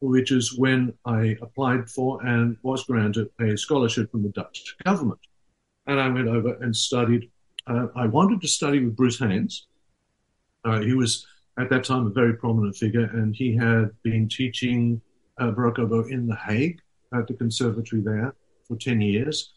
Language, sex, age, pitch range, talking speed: English, male, 50-69, 115-135 Hz, 175 wpm